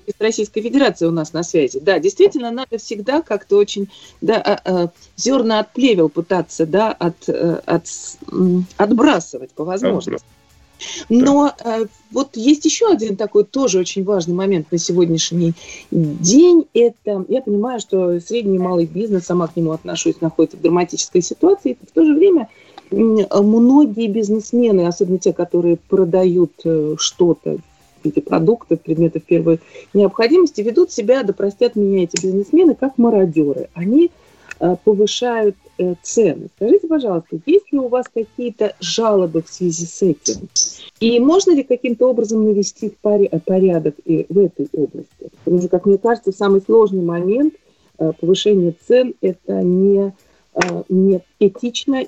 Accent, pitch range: native, 175-240 Hz